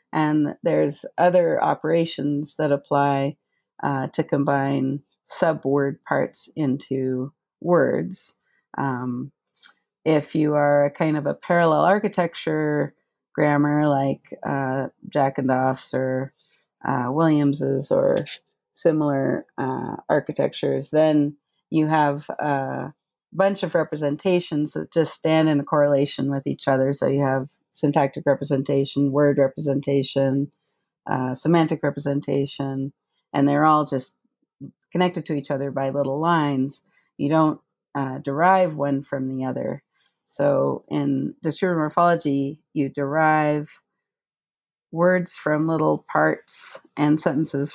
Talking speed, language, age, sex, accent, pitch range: 120 wpm, English, 40-59, female, American, 135-155 Hz